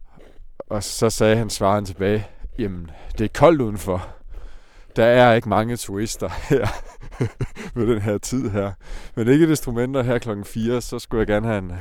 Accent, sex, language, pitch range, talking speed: native, male, Danish, 95-115 Hz, 175 wpm